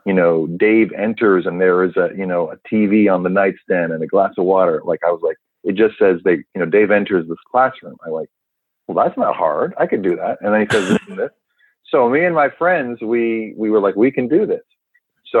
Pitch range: 85-145 Hz